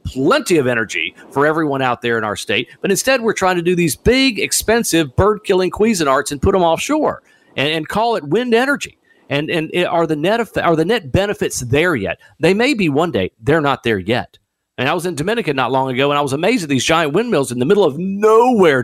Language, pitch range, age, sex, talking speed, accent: English, 120-190 Hz, 50-69, male, 235 wpm, American